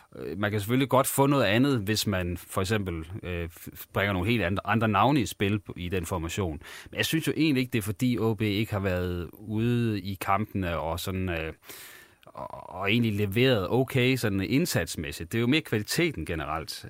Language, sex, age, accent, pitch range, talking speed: Danish, male, 30-49, native, 95-115 Hz, 190 wpm